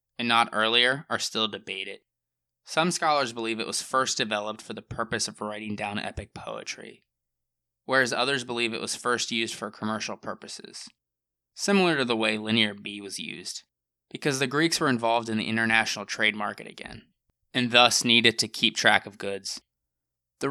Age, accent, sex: 20-39, American, male